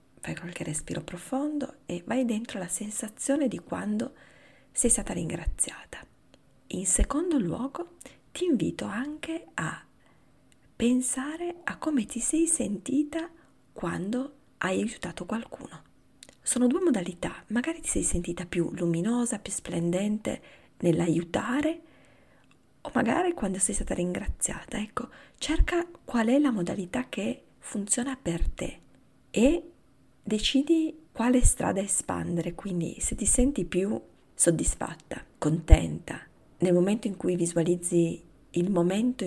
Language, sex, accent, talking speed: Italian, female, native, 120 wpm